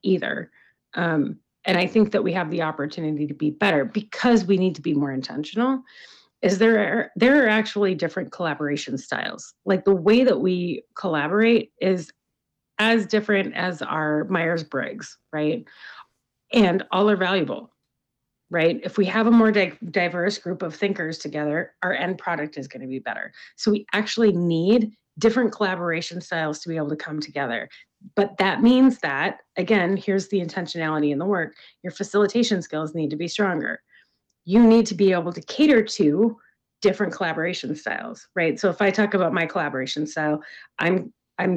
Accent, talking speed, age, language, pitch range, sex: American, 165 wpm, 30-49, English, 160-210 Hz, female